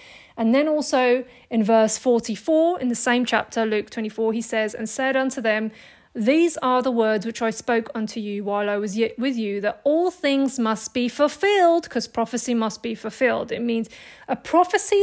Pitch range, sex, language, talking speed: 210-250 Hz, female, English, 190 wpm